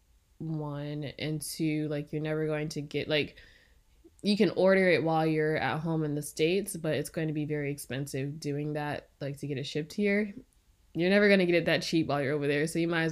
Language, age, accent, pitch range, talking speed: English, 10-29, American, 150-185 Hz, 235 wpm